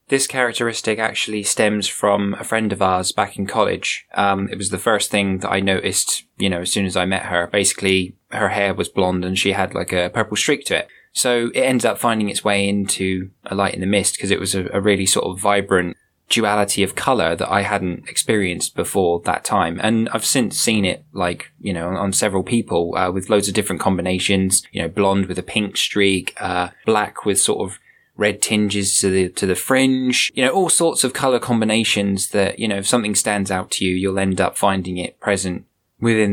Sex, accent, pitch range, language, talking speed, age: male, British, 95-110 Hz, English, 220 wpm, 20-39